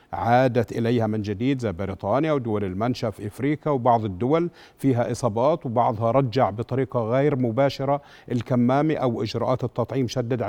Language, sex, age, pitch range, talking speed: Arabic, male, 50-69, 120-155 Hz, 135 wpm